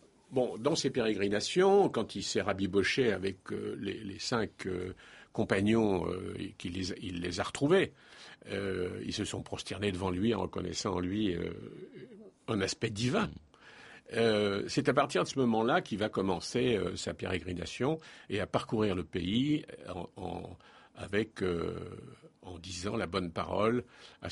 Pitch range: 95-120 Hz